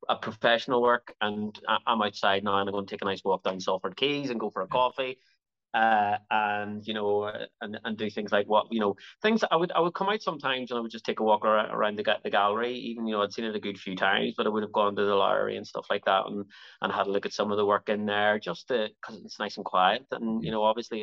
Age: 20-39